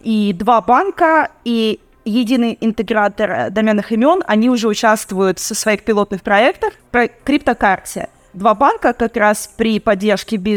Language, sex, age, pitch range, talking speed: Russian, female, 20-39, 190-235 Hz, 130 wpm